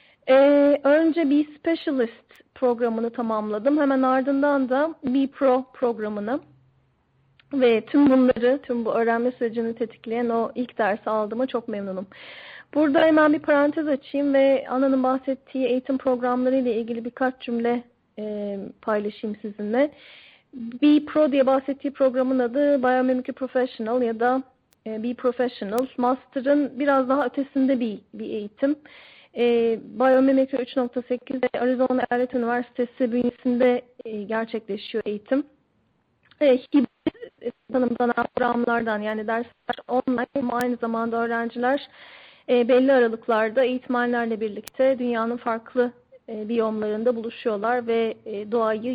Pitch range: 230-270 Hz